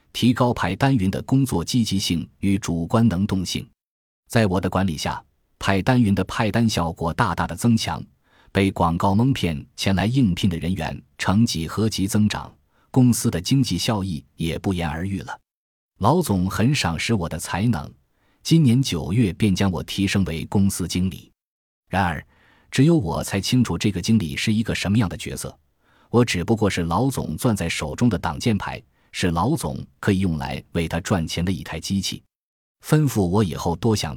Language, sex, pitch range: Chinese, male, 85-110 Hz